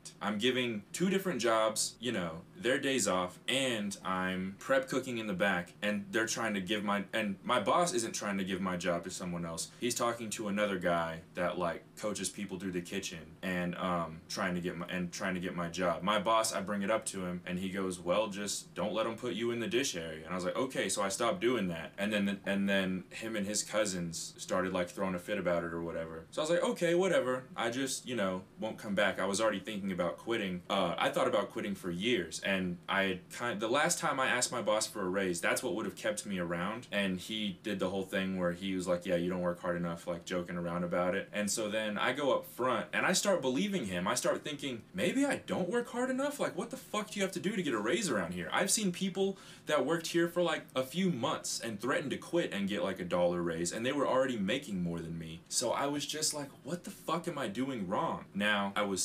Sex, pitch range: male, 90-135 Hz